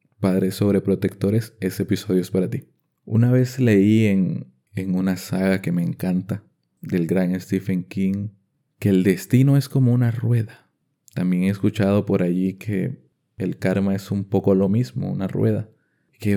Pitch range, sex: 95-115 Hz, male